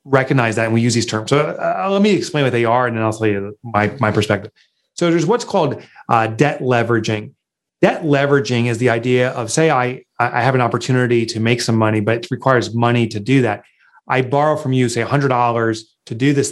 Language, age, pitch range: English, 30-49, 125-170 Hz